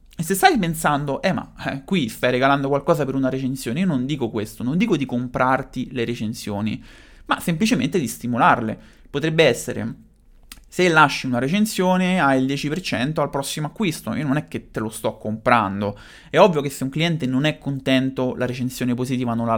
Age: 30-49